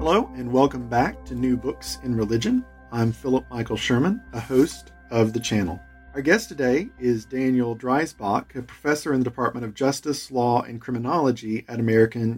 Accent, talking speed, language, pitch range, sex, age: American, 175 wpm, English, 115-145 Hz, male, 40-59